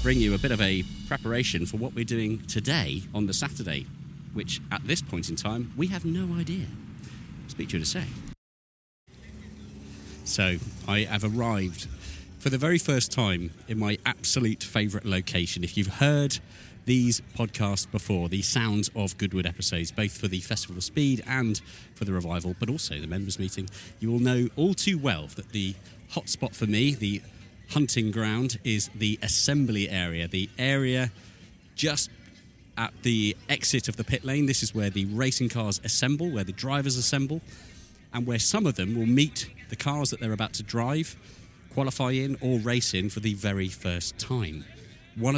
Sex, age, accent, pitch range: male, 40-59, British, 95-125 Hz